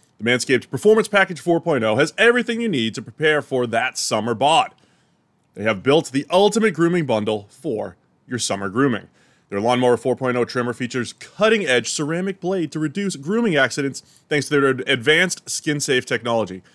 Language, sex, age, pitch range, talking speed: English, male, 30-49, 120-180 Hz, 160 wpm